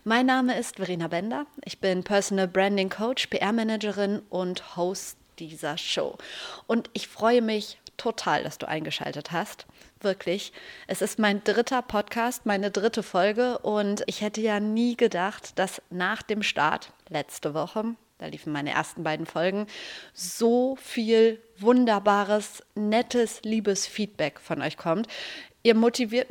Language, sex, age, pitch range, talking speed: German, female, 30-49, 185-225 Hz, 140 wpm